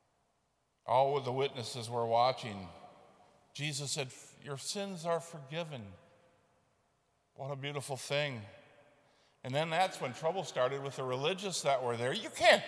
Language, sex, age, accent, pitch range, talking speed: English, male, 50-69, American, 130-175 Hz, 140 wpm